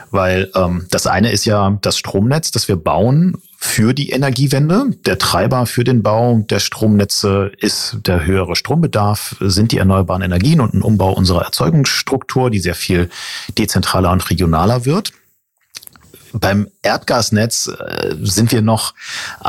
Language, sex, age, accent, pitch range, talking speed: German, male, 40-59, German, 95-120 Hz, 145 wpm